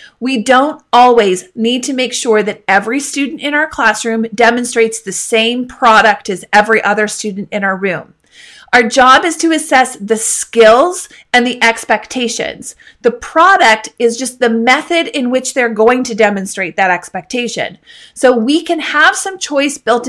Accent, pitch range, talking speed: American, 220-275 Hz, 165 wpm